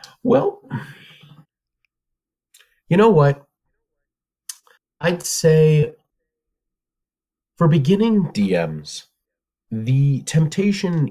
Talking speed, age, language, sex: 60 wpm, 30-49, English, male